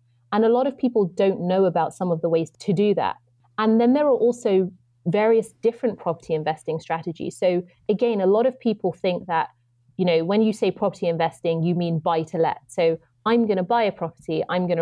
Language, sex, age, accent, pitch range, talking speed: English, female, 30-49, British, 165-220 Hz, 220 wpm